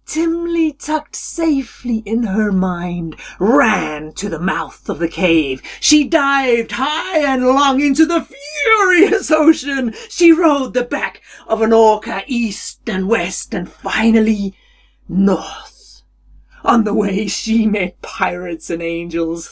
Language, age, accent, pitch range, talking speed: English, 40-59, British, 170-265 Hz, 130 wpm